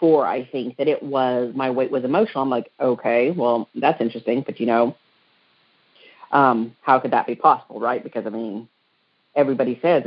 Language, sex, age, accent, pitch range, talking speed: English, female, 40-59, American, 125-165 Hz, 180 wpm